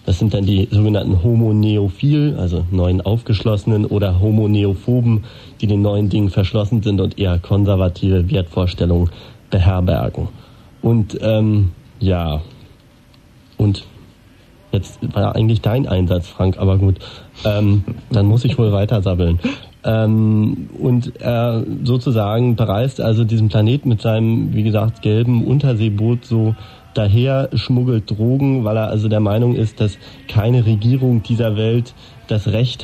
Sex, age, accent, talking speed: male, 30-49, German, 135 wpm